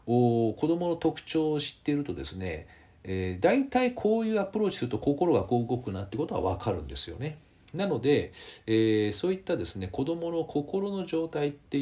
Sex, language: male, Japanese